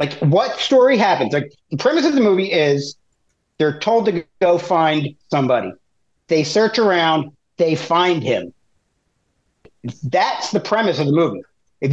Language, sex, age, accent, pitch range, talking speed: English, male, 40-59, American, 145-195 Hz, 150 wpm